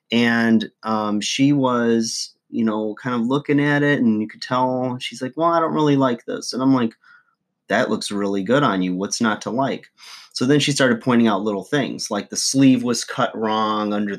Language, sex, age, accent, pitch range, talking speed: English, male, 30-49, American, 105-130 Hz, 215 wpm